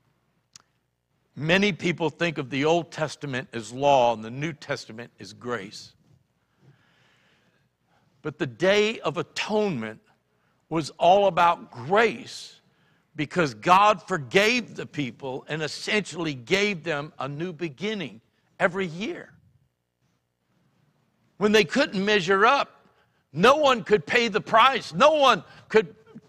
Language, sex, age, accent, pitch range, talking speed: English, male, 60-79, American, 155-210 Hz, 120 wpm